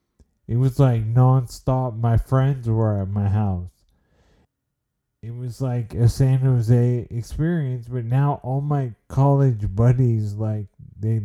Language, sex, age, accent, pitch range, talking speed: English, male, 30-49, American, 95-120 Hz, 135 wpm